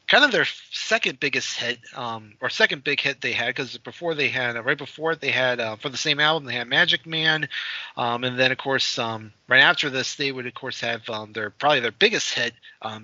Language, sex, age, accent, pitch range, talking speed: English, male, 30-49, American, 115-145 Hz, 240 wpm